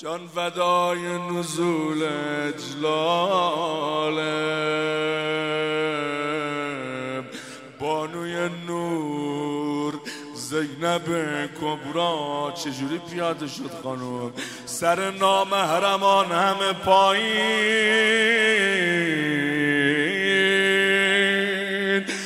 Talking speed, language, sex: 45 wpm, Persian, male